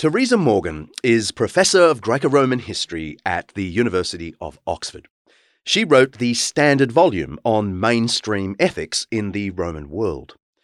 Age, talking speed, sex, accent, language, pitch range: 30-49, 135 wpm, male, Australian, English, 95-130 Hz